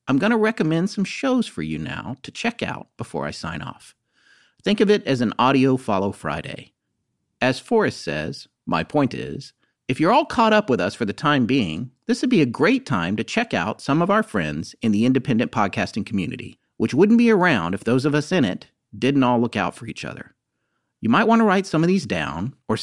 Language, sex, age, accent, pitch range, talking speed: English, male, 40-59, American, 115-185 Hz, 220 wpm